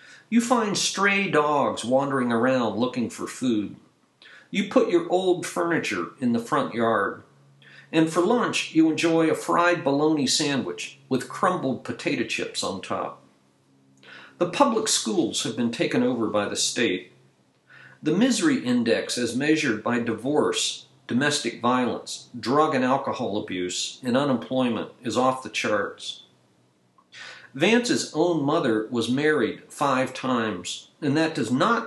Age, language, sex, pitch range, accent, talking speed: 50-69, English, male, 110-170 Hz, American, 135 wpm